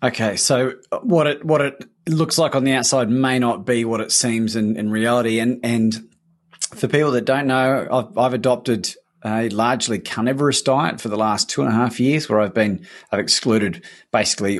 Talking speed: 195 wpm